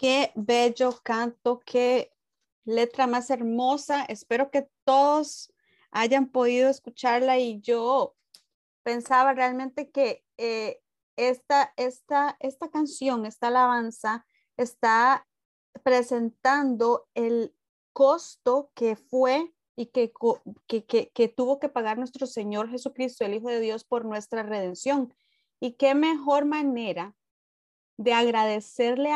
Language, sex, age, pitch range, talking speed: English, female, 30-49, 230-275 Hz, 110 wpm